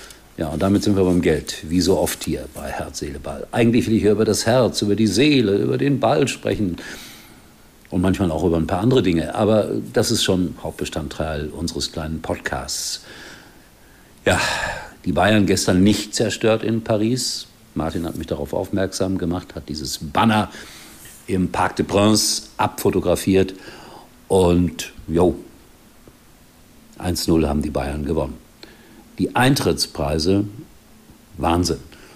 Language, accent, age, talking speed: German, German, 60-79, 145 wpm